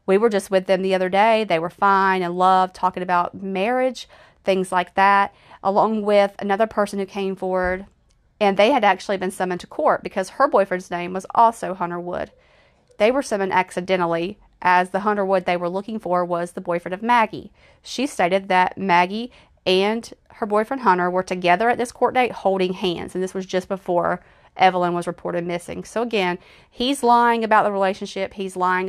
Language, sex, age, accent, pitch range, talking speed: English, female, 30-49, American, 180-210 Hz, 195 wpm